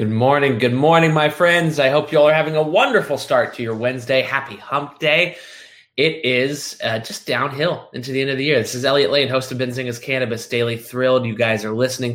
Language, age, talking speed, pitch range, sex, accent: English, 20-39, 225 wpm, 120-150 Hz, male, American